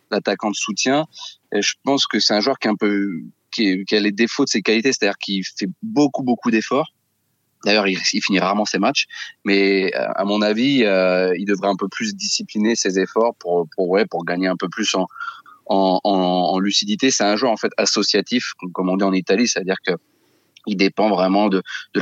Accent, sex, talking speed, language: French, male, 220 wpm, French